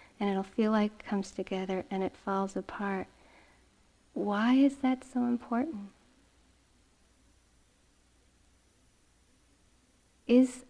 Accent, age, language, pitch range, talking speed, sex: American, 40-59, English, 190-225 Hz, 95 wpm, female